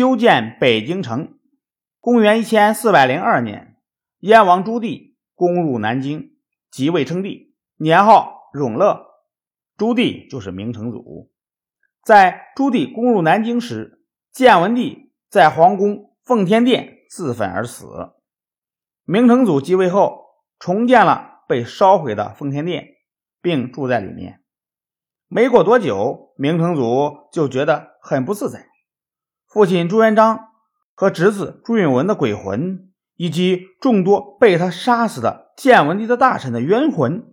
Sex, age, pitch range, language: male, 50-69, 150-240 Hz, Chinese